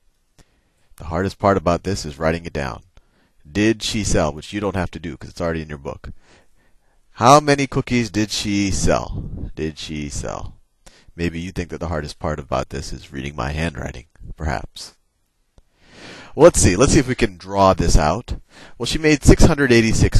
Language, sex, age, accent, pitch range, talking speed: English, male, 30-49, American, 80-105 Hz, 185 wpm